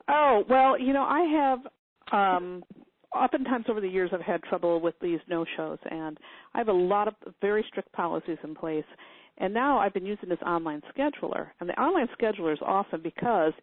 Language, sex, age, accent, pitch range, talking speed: English, female, 50-69, American, 170-230 Hz, 200 wpm